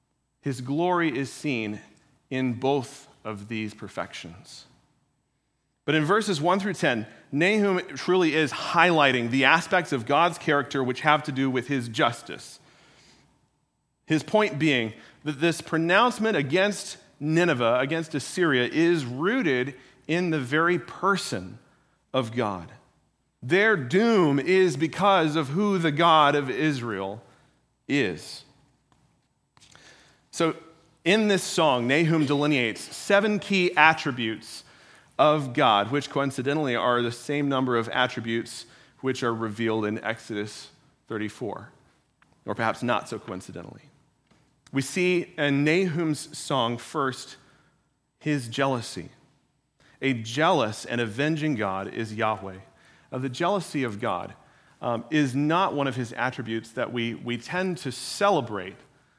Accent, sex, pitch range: American, male, 120-165 Hz